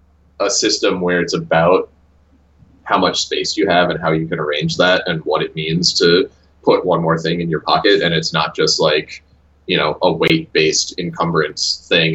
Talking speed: 200 wpm